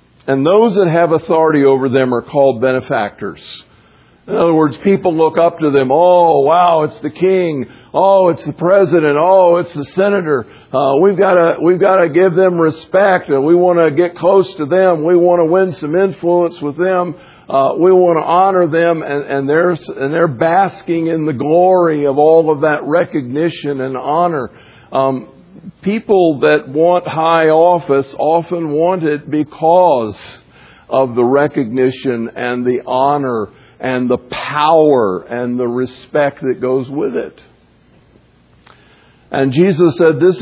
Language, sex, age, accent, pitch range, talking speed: English, male, 50-69, American, 140-180 Hz, 160 wpm